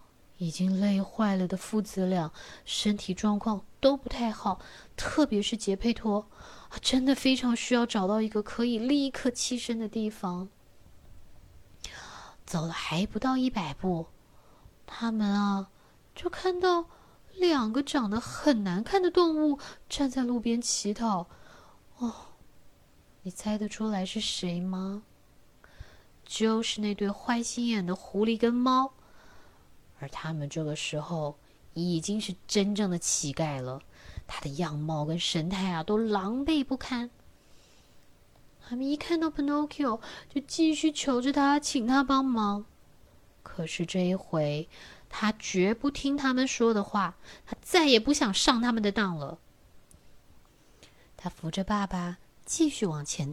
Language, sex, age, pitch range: Chinese, female, 20-39, 180-260 Hz